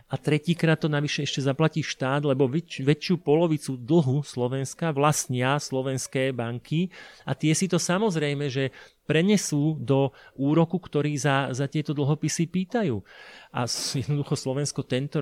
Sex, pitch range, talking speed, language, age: male, 130-160 Hz, 135 wpm, Slovak, 30-49